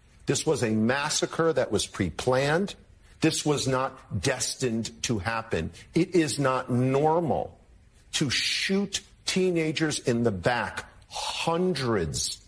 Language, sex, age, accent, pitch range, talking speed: English, male, 50-69, American, 115-155 Hz, 115 wpm